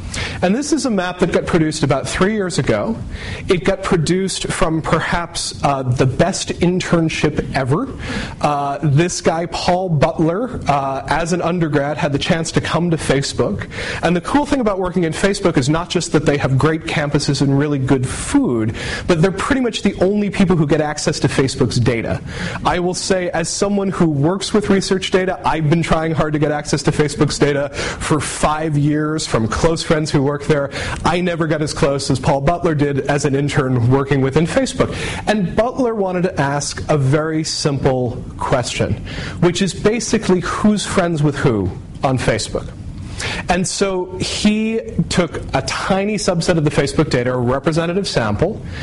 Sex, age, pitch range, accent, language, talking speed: male, 30-49, 140-180 Hz, American, English, 180 wpm